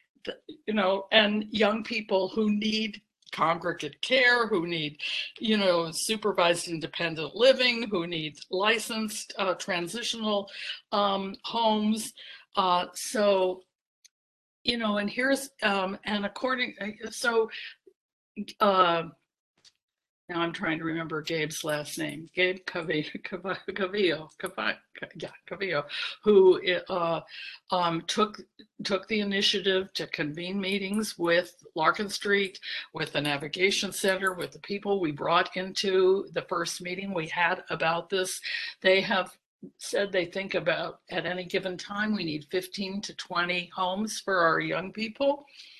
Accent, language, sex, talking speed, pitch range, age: American, English, female, 125 wpm, 175-220 Hz, 60-79